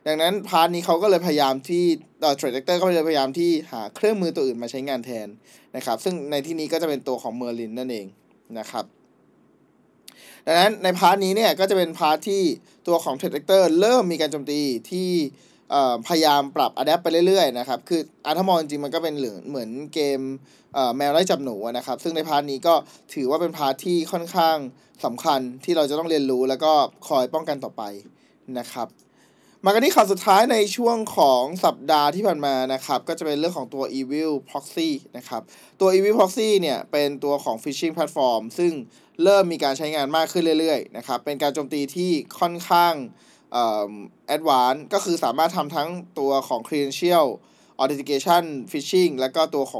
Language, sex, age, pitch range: Thai, male, 20-39, 135-180 Hz